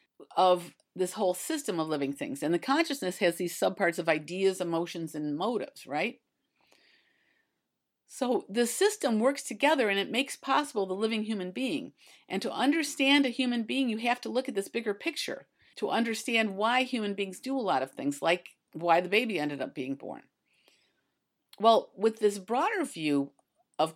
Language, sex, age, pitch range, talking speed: English, female, 50-69, 175-245 Hz, 175 wpm